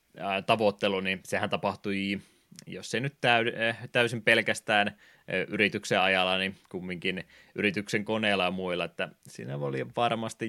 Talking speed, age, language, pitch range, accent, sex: 120 wpm, 20-39, Finnish, 90-105 Hz, native, male